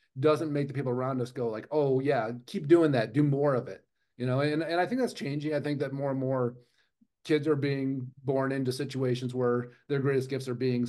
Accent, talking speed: American, 235 wpm